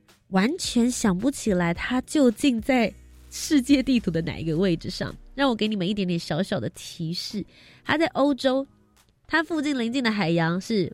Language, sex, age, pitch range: Chinese, female, 20-39, 180-255 Hz